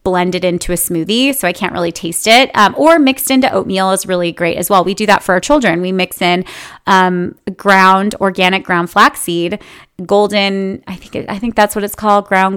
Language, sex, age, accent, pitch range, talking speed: English, female, 30-49, American, 185-240 Hz, 210 wpm